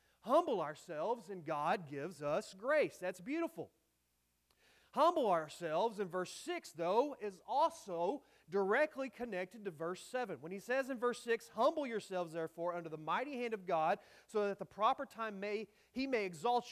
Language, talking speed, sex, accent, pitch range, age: English, 170 wpm, male, American, 160-230 Hz, 30-49